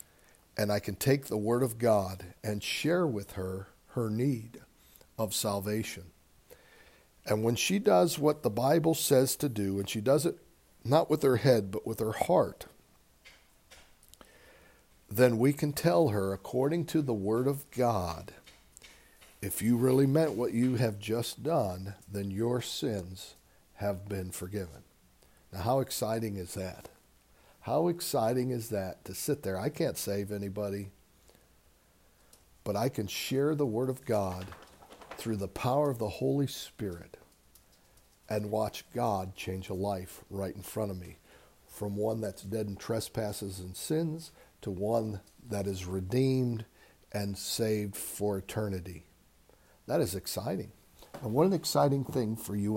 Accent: American